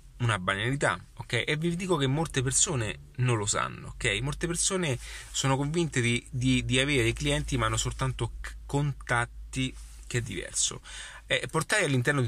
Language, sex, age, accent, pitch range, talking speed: Italian, male, 30-49, native, 105-135 Hz, 160 wpm